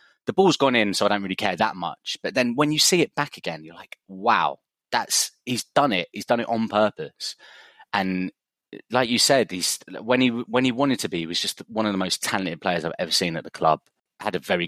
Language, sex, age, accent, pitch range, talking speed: English, male, 20-39, British, 80-110 Hz, 250 wpm